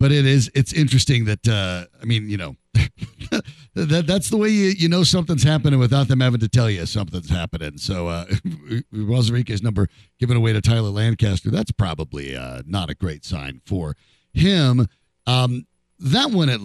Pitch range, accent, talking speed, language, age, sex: 85-135 Hz, American, 180 wpm, English, 50-69, male